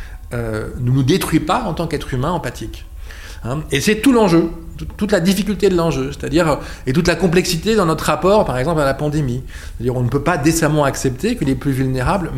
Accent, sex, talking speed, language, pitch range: French, male, 215 wpm, French, 125-180 Hz